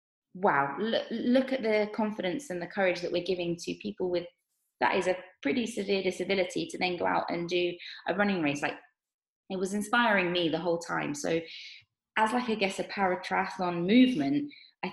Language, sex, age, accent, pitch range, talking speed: English, female, 20-39, British, 165-200 Hz, 190 wpm